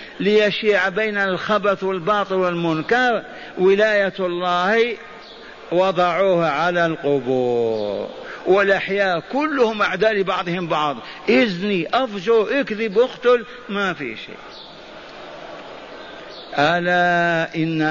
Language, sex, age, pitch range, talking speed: Arabic, male, 50-69, 160-215 Hz, 80 wpm